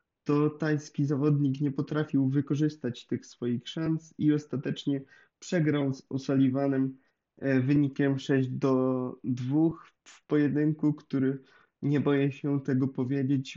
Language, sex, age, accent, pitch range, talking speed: Polish, male, 20-39, native, 130-150 Hz, 115 wpm